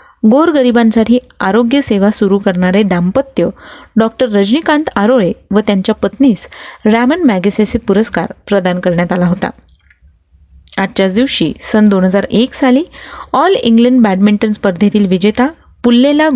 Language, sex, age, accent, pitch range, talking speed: Marathi, female, 30-49, native, 200-255 Hz, 110 wpm